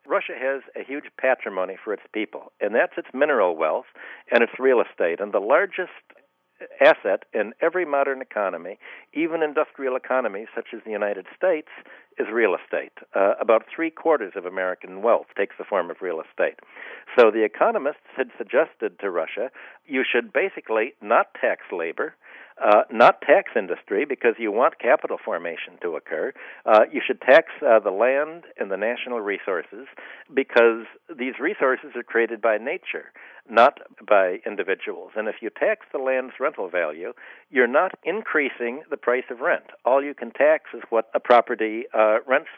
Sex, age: male, 60-79